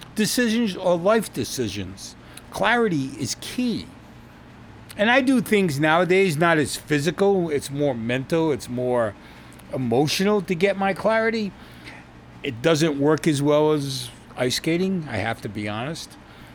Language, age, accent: English, 40-59, American